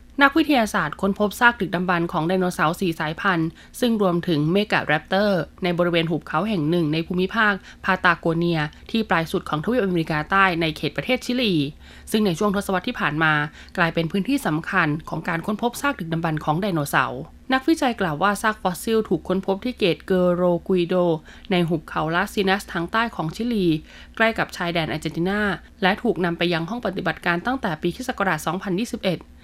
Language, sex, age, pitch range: Thai, female, 20-39, 165-210 Hz